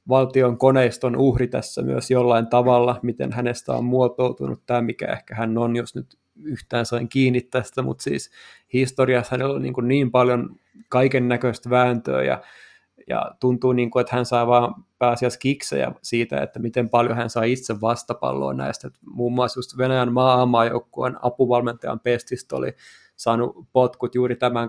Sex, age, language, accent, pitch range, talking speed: male, 20-39, Finnish, native, 120-130 Hz, 155 wpm